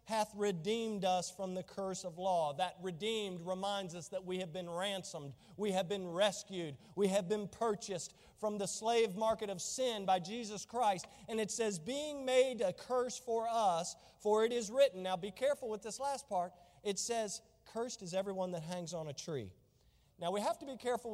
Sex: male